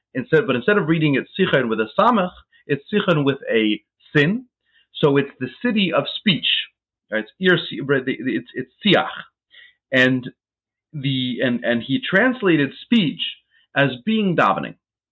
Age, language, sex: 40-59, English, male